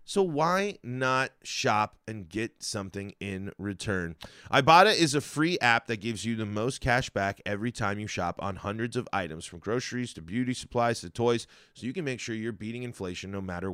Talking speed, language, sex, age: 200 wpm, English, male, 30-49